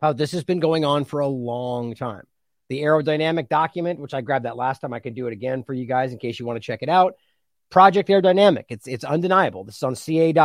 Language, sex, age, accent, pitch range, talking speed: English, male, 30-49, American, 155-205 Hz, 260 wpm